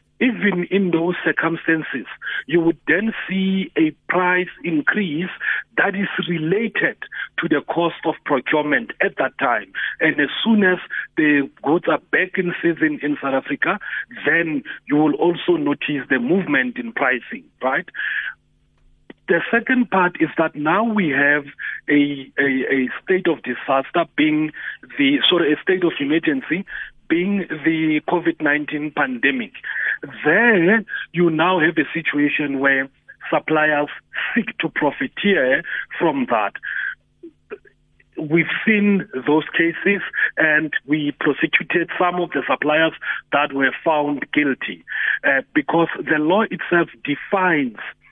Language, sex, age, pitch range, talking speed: English, male, 50-69, 145-200 Hz, 130 wpm